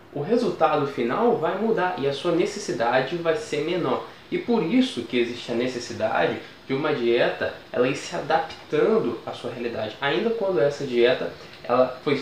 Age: 10-29